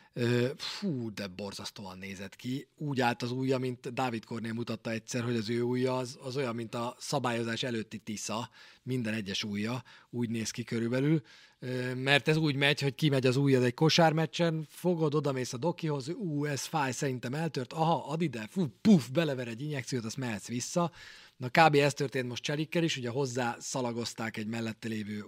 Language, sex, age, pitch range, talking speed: Hungarian, male, 40-59, 115-145 Hz, 180 wpm